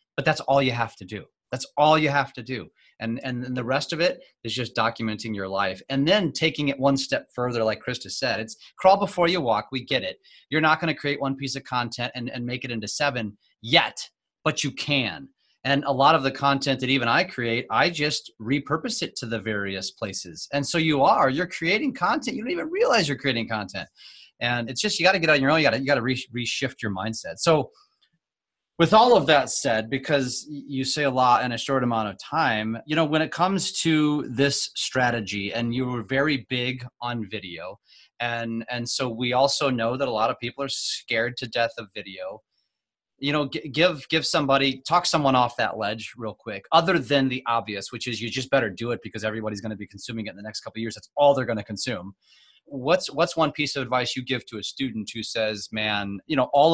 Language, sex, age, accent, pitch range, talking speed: English, male, 30-49, American, 115-145 Hz, 235 wpm